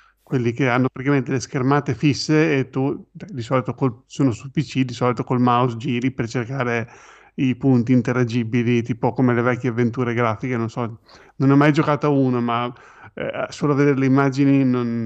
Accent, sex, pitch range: native, male, 120-140 Hz